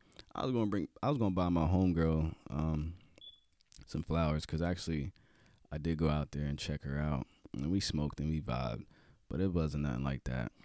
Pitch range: 75-90 Hz